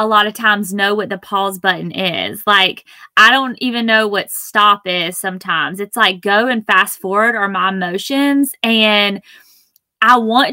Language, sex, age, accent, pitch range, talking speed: English, female, 20-39, American, 195-230 Hz, 175 wpm